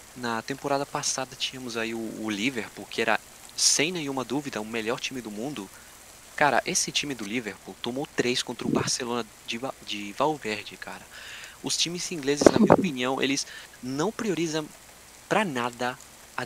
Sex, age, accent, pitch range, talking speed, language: male, 20-39, Brazilian, 120-195 Hz, 160 wpm, Portuguese